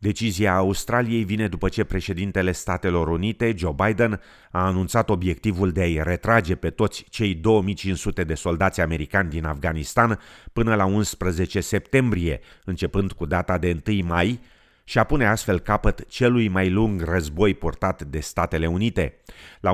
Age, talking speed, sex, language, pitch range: 30-49, 150 wpm, male, Romanian, 85-105 Hz